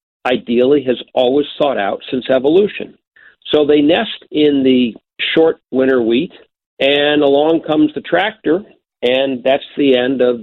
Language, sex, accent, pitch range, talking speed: English, male, American, 125-150 Hz, 145 wpm